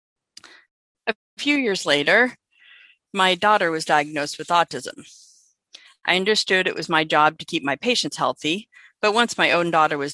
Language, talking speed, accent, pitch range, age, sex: English, 160 wpm, American, 150-195 Hz, 40-59, female